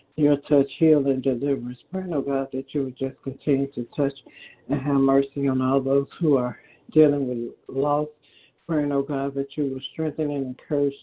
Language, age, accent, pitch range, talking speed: English, 60-79, American, 135-145 Hz, 190 wpm